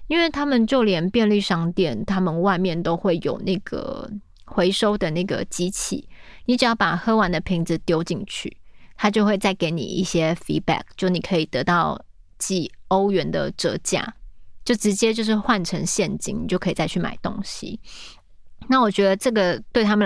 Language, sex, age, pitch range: Chinese, female, 20-39, 175-215 Hz